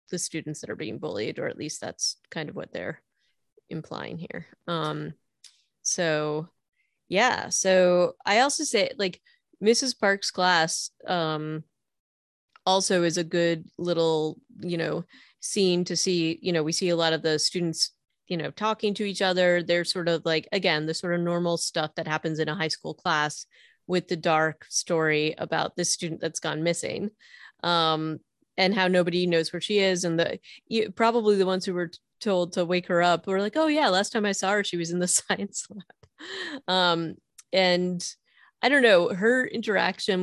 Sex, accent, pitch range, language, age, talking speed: female, American, 170-205 Hz, English, 30-49, 180 wpm